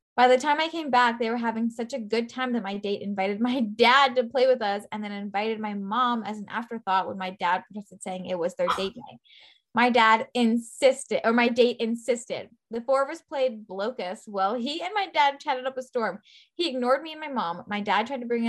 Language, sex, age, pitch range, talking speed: English, female, 10-29, 200-255 Hz, 240 wpm